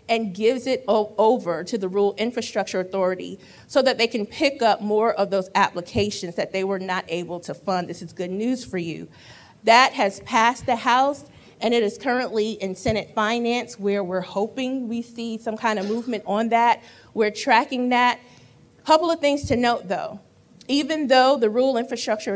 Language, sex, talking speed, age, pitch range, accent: English, female, 185 wpm, 40-59, 200-245 Hz, American